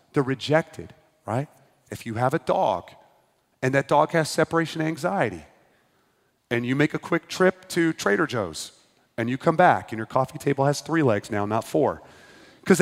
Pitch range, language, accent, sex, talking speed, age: 110-160 Hz, English, American, male, 180 wpm, 30-49